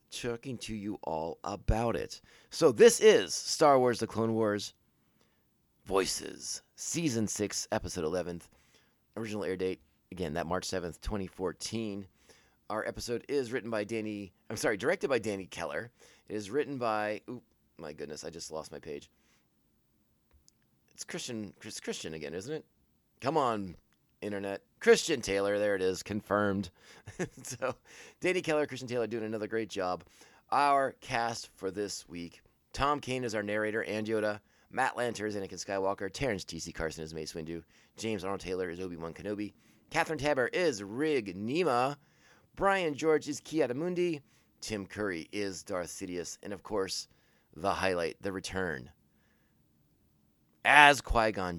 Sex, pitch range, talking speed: male, 90-120 Hz, 150 wpm